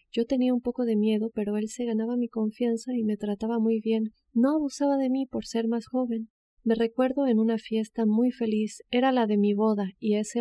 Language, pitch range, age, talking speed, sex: Spanish, 210-235 Hz, 40-59, 225 wpm, female